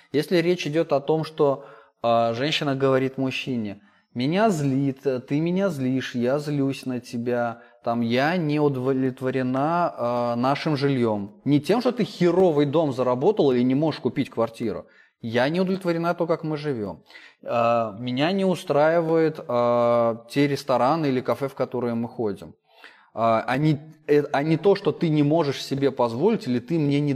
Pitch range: 120-150 Hz